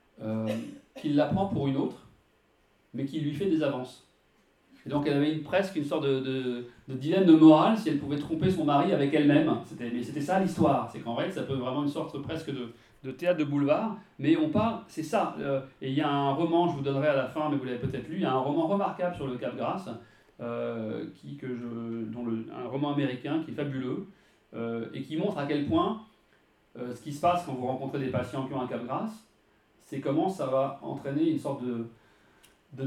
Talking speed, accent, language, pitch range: 235 wpm, French, French, 130-170 Hz